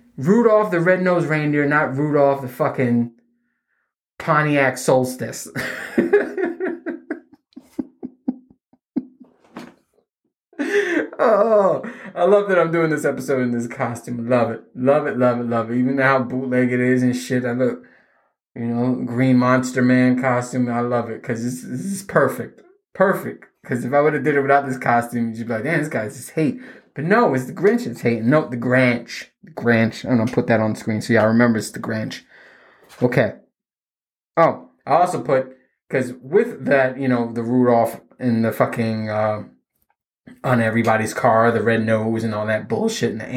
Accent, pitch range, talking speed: American, 120-165 Hz, 175 wpm